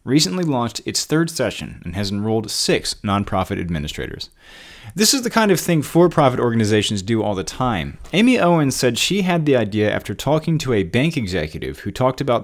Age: 30-49